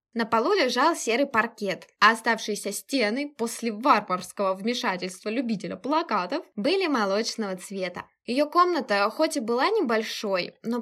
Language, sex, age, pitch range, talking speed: Russian, female, 10-29, 210-290 Hz, 130 wpm